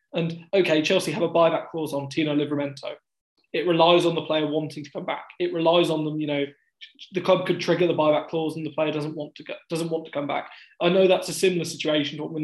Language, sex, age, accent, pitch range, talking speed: English, male, 20-39, British, 155-180 Hz, 250 wpm